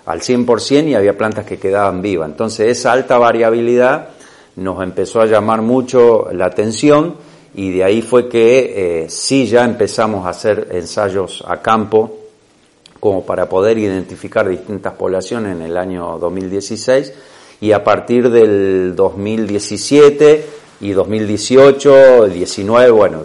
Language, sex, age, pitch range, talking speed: Spanish, male, 40-59, 95-125 Hz, 135 wpm